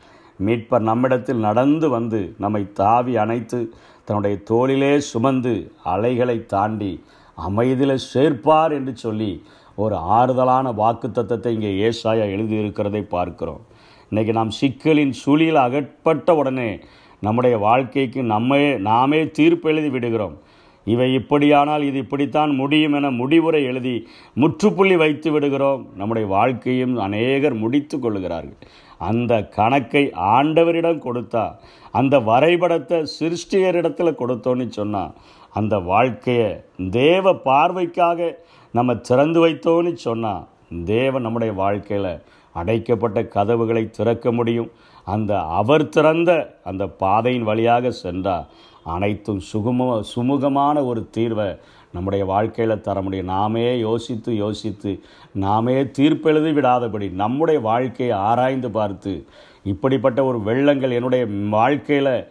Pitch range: 110-145 Hz